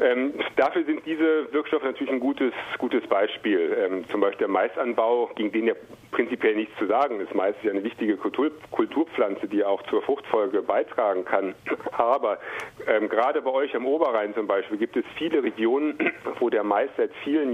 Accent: German